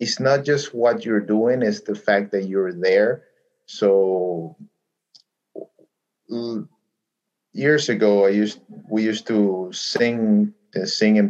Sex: male